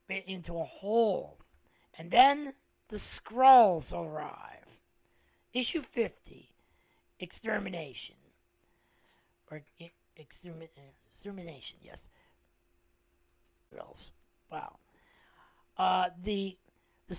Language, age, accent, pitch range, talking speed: English, 40-59, American, 165-220 Hz, 70 wpm